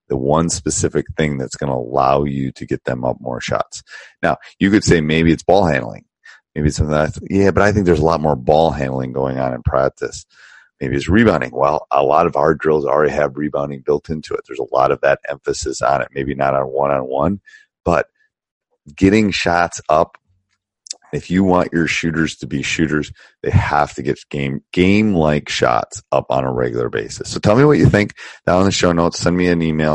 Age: 30-49